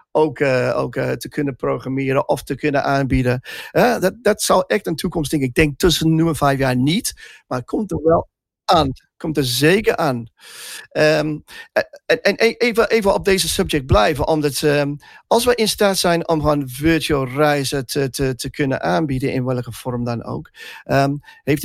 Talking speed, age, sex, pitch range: 185 wpm, 40-59, male, 130-165 Hz